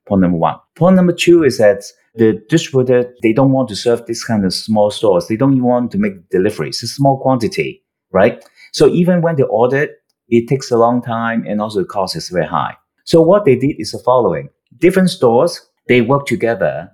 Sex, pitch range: male, 115-150 Hz